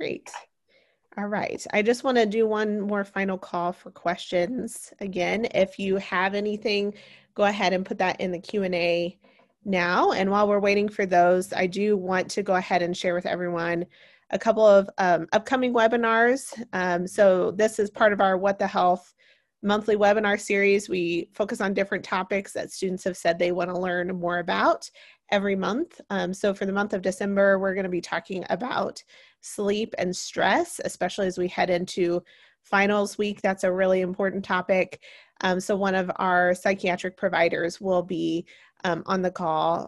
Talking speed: 180 wpm